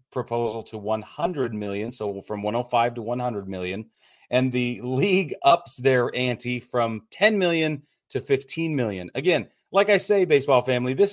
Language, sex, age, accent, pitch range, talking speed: English, male, 30-49, American, 115-145 Hz, 155 wpm